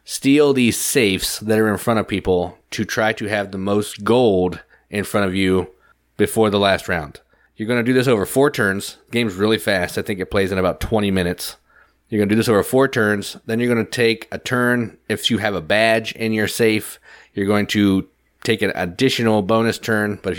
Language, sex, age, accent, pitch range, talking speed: English, male, 30-49, American, 95-115 Hz, 215 wpm